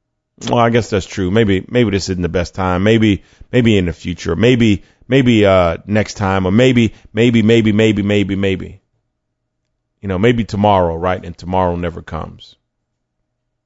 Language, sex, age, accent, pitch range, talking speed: English, male, 30-49, American, 95-115 Hz, 165 wpm